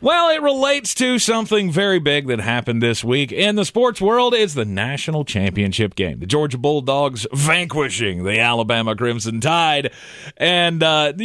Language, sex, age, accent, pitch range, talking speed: English, male, 30-49, American, 115-170 Hz, 160 wpm